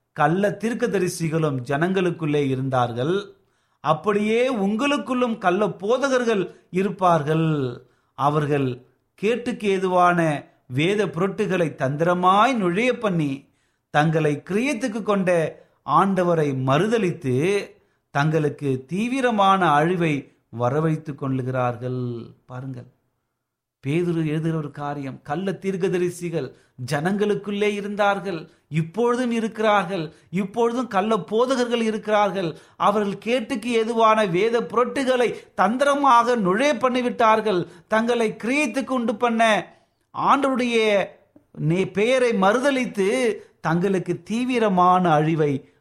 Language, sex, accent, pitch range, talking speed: Tamil, male, native, 145-215 Hz, 75 wpm